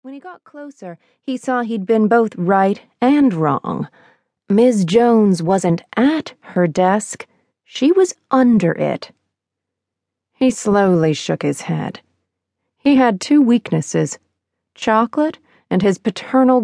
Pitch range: 180-245 Hz